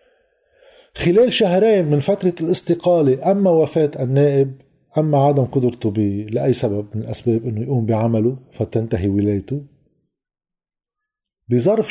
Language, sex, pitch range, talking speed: Arabic, male, 125-170 Hz, 110 wpm